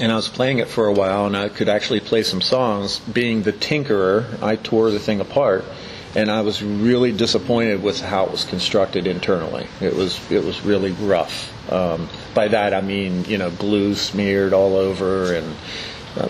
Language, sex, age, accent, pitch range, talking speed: English, male, 40-59, American, 95-110 Hz, 195 wpm